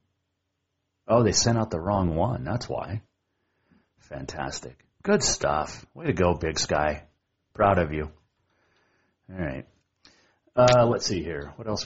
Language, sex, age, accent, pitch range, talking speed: English, male, 30-49, American, 95-110 Hz, 140 wpm